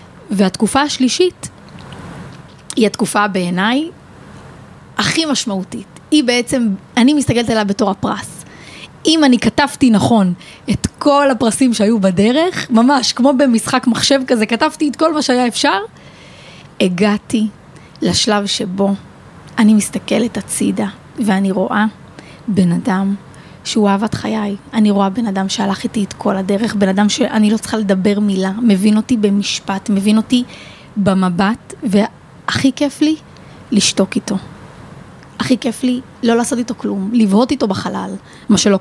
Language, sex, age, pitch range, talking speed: Hebrew, female, 20-39, 200-250 Hz, 135 wpm